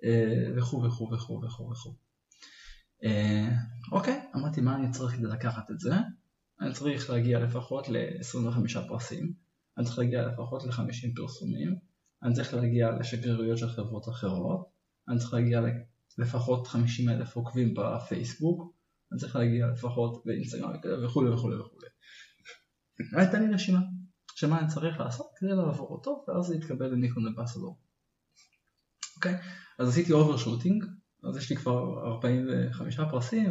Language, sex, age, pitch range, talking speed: Hebrew, male, 20-39, 120-170 Hz, 100 wpm